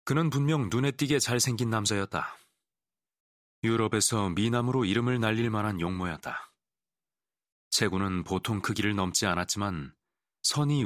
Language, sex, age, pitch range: Korean, male, 30-49, 95-125 Hz